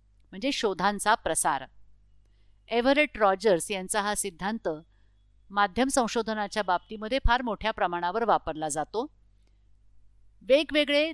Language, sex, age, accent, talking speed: Marathi, female, 50-69, native, 90 wpm